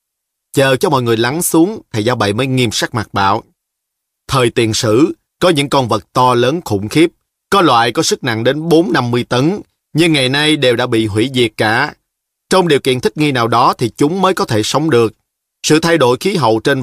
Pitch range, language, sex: 110-160 Hz, Vietnamese, male